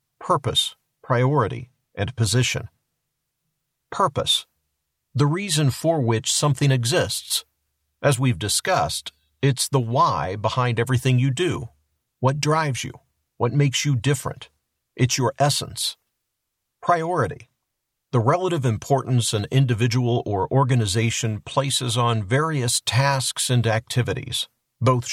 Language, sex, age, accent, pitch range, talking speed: English, male, 50-69, American, 115-140 Hz, 110 wpm